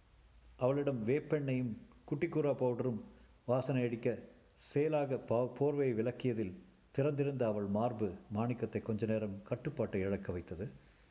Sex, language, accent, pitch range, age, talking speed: male, Tamil, native, 105-135 Hz, 50-69, 95 wpm